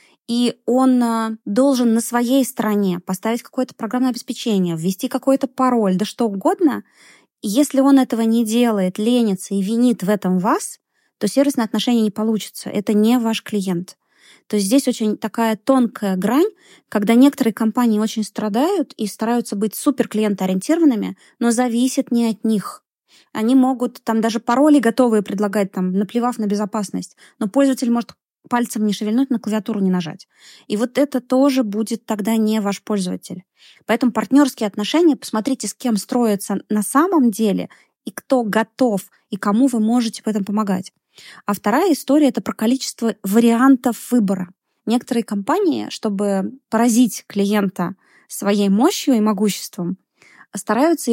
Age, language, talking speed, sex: 20-39, Russian, 150 wpm, female